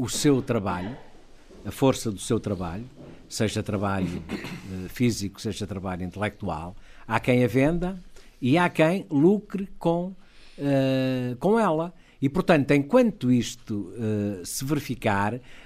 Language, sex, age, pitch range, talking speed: Portuguese, male, 60-79, 110-155 Hz, 120 wpm